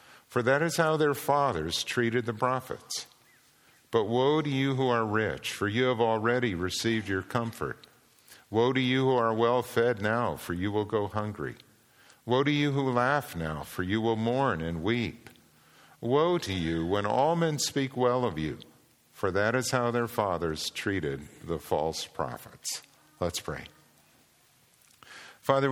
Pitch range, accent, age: 90-120 Hz, American, 50-69